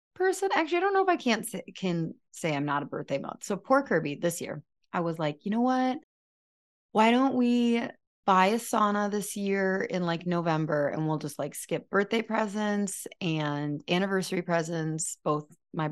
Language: English